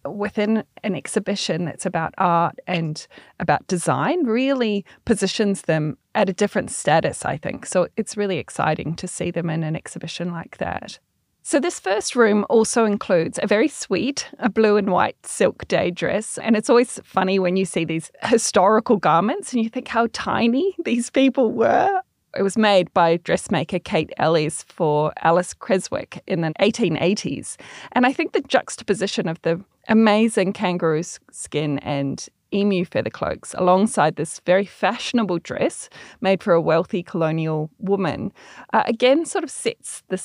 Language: English